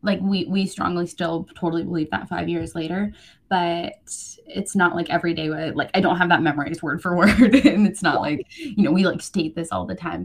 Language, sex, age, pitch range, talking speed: English, female, 20-39, 160-195 Hz, 240 wpm